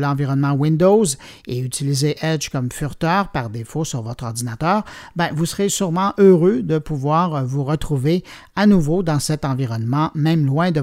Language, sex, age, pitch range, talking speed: French, male, 50-69, 140-200 Hz, 160 wpm